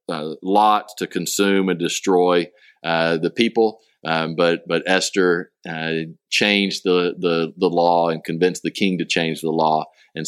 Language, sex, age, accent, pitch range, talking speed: English, male, 40-59, American, 85-110 Hz, 165 wpm